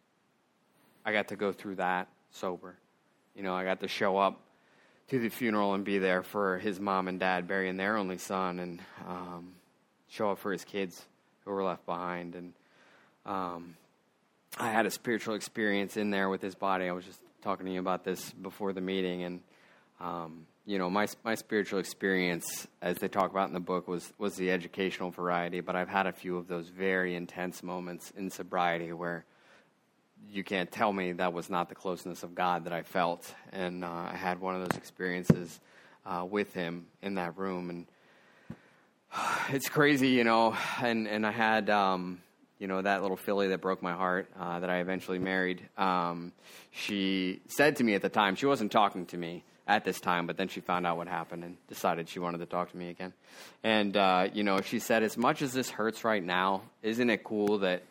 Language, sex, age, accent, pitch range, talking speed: English, male, 20-39, American, 90-100 Hz, 205 wpm